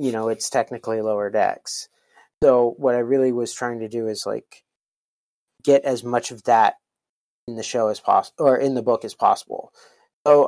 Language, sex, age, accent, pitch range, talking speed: English, male, 30-49, American, 110-130 Hz, 190 wpm